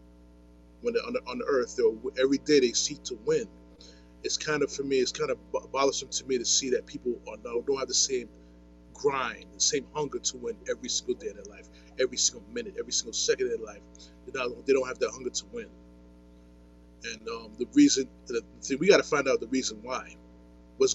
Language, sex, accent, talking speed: English, male, American, 225 wpm